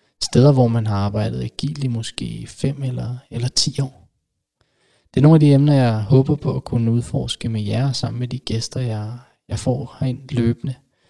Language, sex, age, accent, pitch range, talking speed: Danish, male, 20-39, native, 115-140 Hz, 195 wpm